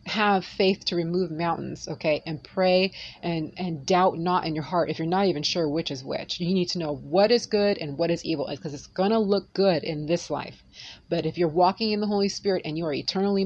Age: 30-49